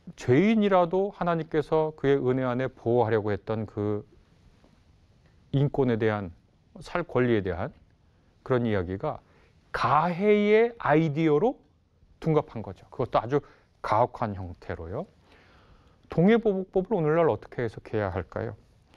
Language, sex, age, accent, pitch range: Korean, male, 30-49, native, 100-160 Hz